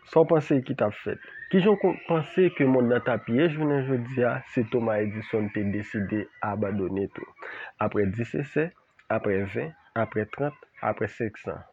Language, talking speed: French, 165 wpm